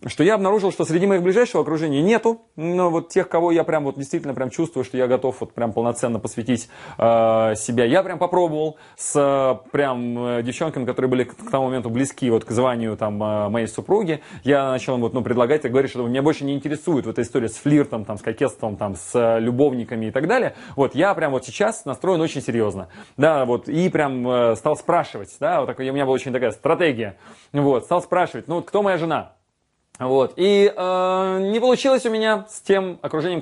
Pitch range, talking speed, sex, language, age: 125-170 Hz, 210 wpm, male, Russian, 20-39